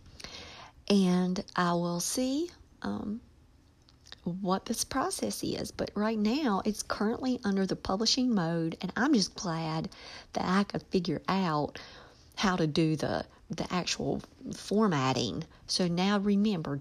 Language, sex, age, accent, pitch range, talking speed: English, female, 50-69, American, 160-200 Hz, 130 wpm